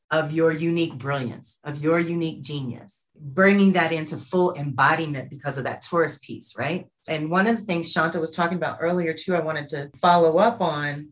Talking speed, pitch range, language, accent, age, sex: 195 wpm, 145-175 Hz, English, American, 30-49, female